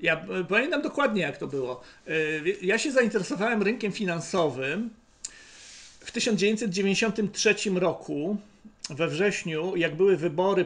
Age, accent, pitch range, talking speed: 40-59, native, 165-205 Hz, 105 wpm